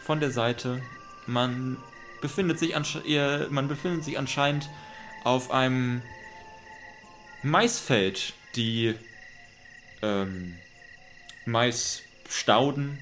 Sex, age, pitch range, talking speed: male, 20-39, 105-135 Hz, 65 wpm